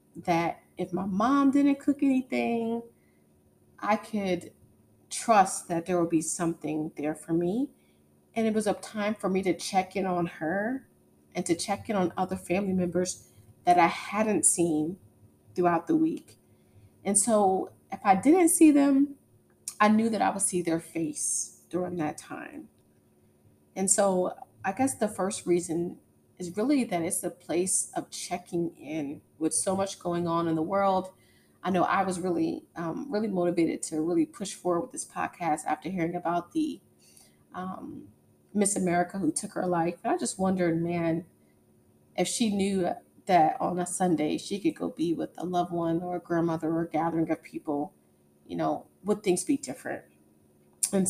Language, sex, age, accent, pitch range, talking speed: English, female, 30-49, American, 170-210 Hz, 175 wpm